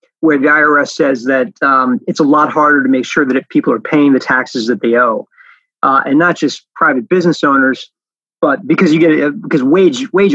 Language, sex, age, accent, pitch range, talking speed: English, male, 30-49, American, 140-200 Hz, 220 wpm